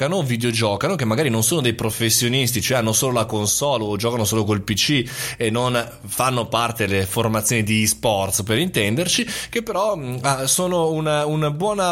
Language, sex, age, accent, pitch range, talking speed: Italian, male, 20-39, native, 115-155 Hz, 170 wpm